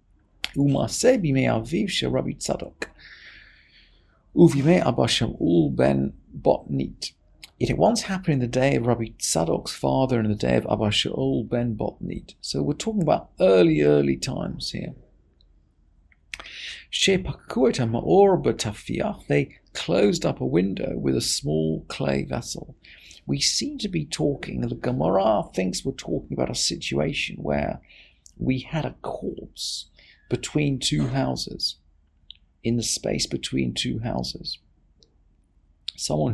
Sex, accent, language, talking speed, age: male, British, English, 105 wpm, 40-59